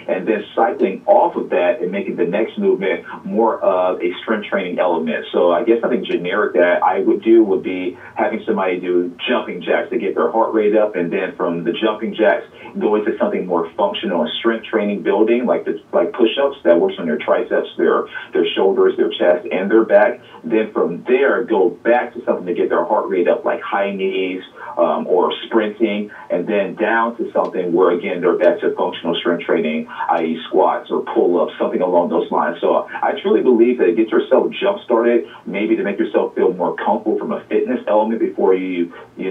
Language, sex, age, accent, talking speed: English, male, 40-59, American, 195 wpm